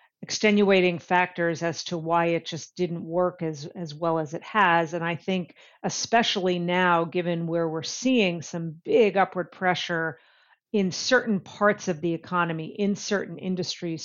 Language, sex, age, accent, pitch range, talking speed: English, female, 40-59, American, 170-190 Hz, 160 wpm